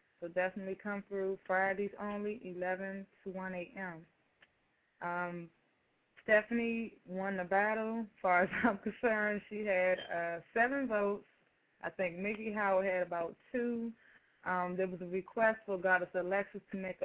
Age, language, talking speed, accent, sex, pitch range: 20-39, English, 150 wpm, American, female, 180-200 Hz